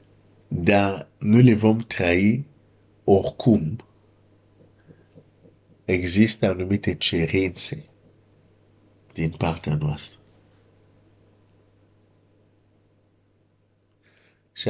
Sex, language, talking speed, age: male, Romanian, 55 wpm, 50-69